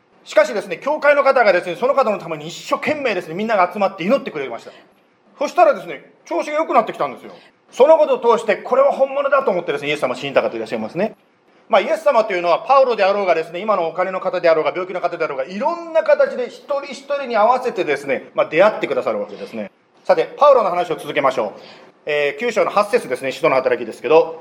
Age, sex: 40-59, male